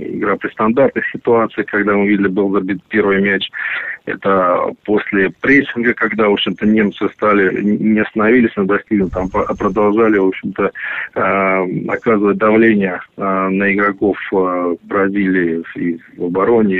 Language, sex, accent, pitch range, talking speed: Russian, male, native, 95-115 Hz, 130 wpm